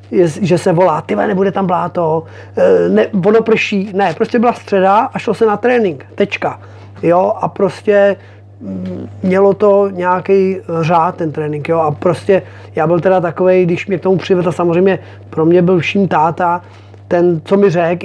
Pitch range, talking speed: 160-195 Hz, 170 wpm